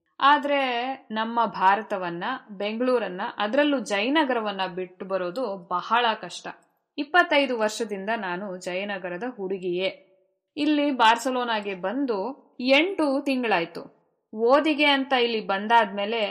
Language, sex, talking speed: Kannada, female, 90 wpm